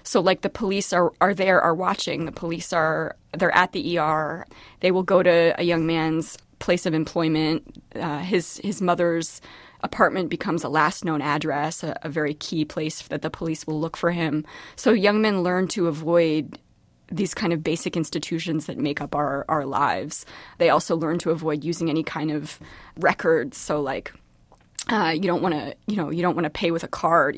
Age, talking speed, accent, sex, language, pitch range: 20-39, 200 wpm, American, female, English, 155-185 Hz